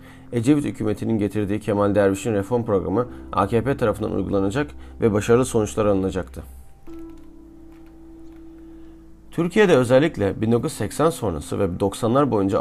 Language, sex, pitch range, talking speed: Turkish, male, 105-140 Hz, 100 wpm